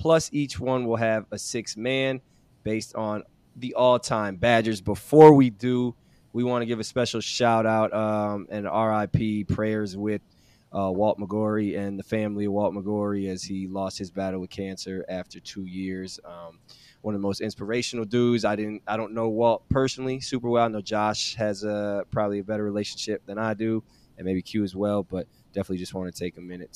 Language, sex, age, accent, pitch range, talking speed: English, male, 20-39, American, 100-125 Hz, 195 wpm